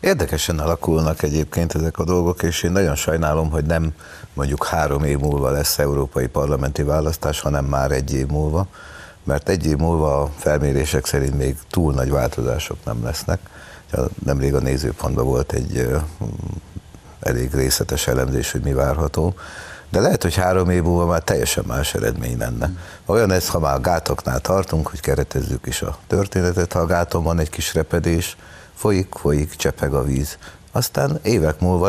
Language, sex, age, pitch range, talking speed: Hungarian, male, 60-79, 70-85 Hz, 165 wpm